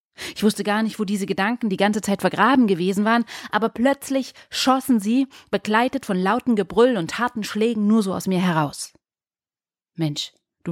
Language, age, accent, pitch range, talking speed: German, 30-49, German, 185-240 Hz, 175 wpm